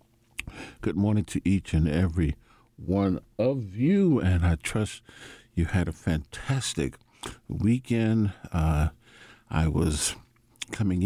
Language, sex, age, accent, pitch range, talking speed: English, male, 60-79, American, 85-115 Hz, 115 wpm